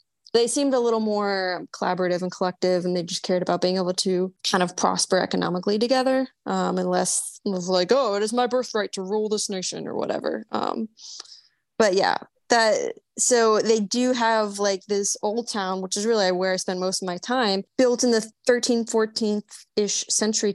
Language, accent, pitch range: English, American, 185-220 Hz